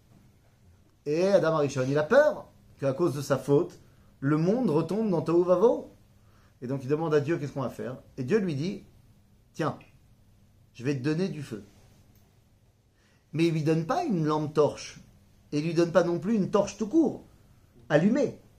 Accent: French